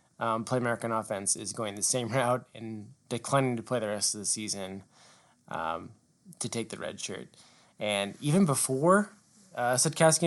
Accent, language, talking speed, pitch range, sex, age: American, English, 170 wpm, 110-135 Hz, male, 20-39